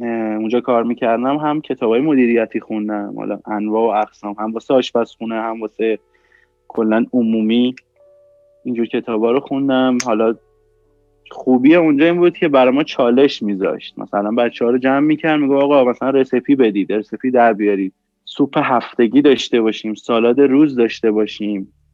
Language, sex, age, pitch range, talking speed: Persian, male, 20-39, 105-130 Hz, 150 wpm